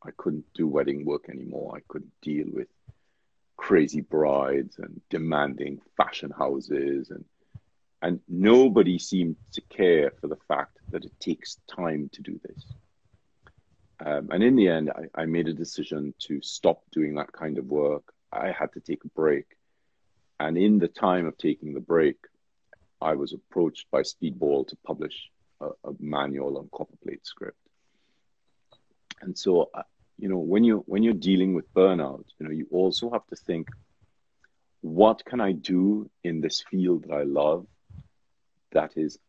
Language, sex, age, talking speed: English, male, 50-69, 160 wpm